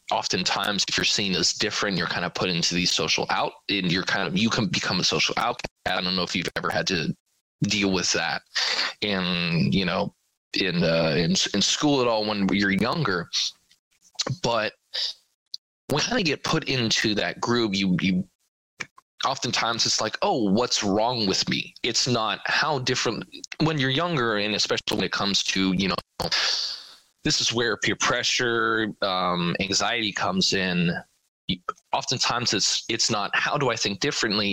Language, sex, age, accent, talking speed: English, male, 20-39, American, 175 wpm